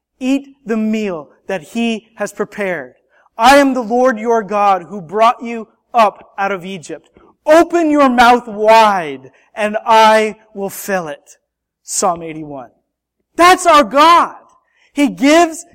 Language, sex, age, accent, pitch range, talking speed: English, male, 30-49, American, 165-250 Hz, 135 wpm